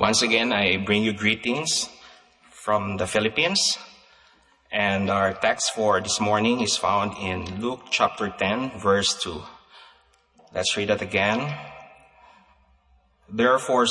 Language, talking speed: English, 120 wpm